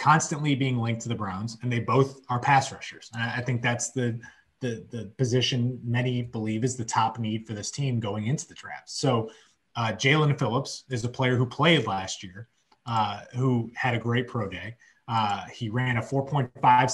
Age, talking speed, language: 30-49, 200 wpm, English